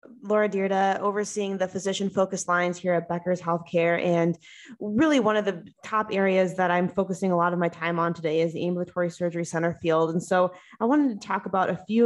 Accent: American